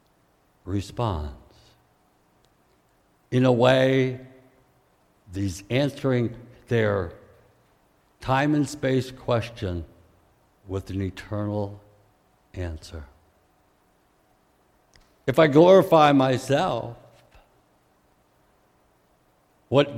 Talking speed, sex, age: 60 wpm, male, 70-89